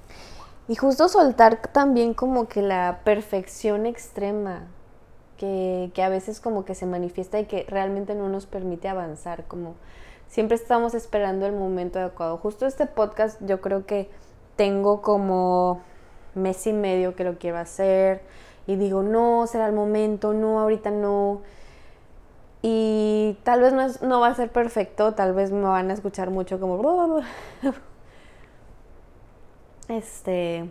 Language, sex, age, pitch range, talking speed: Spanish, female, 20-39, 190-220 Hz, 145 wpm